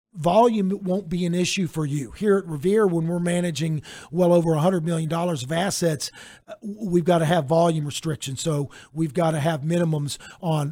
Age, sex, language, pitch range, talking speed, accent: 50-69, male, English, 160-190 Hz, 180 wpm, American